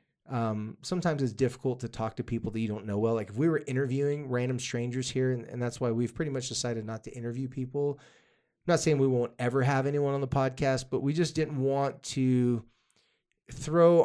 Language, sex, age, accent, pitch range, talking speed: English, male, 20-39, American, 115-135 Hz, 215 wpm